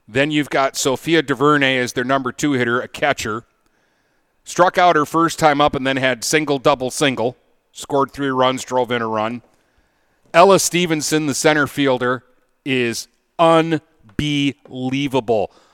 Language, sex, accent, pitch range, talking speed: English, male, American, 130-160 Hz, 145 wpm